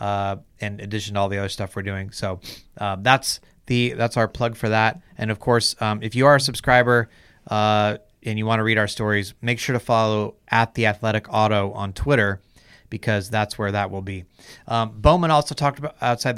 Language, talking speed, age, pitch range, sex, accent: English, 215 wpm, 30-49, 105-130 Hz, male, American